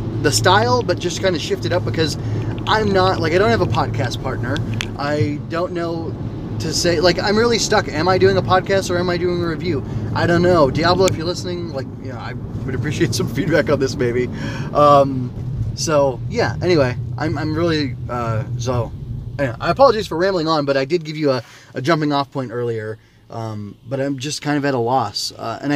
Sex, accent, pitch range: male, American, 120-150 Hz